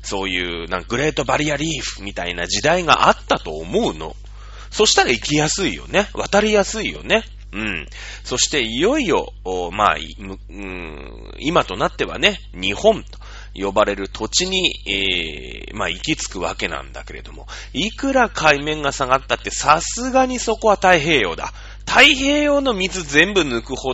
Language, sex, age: Japanese, male, 30-49